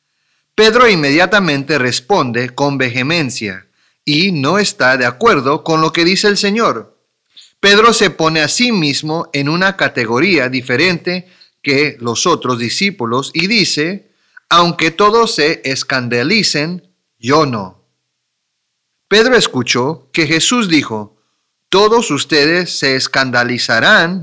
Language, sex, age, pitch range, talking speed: English, male, 40-59, 125-185 Hz, 115 wpm